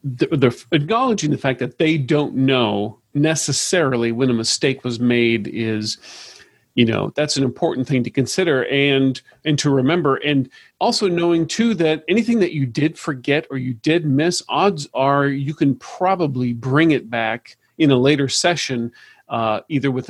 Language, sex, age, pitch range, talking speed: English, male, 40-59, 125-150 Hz, 175 wpm